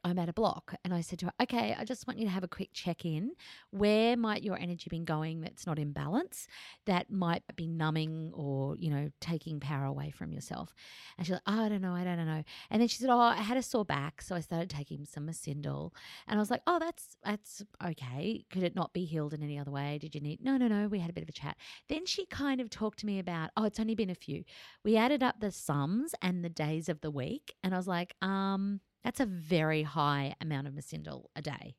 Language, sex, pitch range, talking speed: English, female, 155-205 Hz, 260 wpm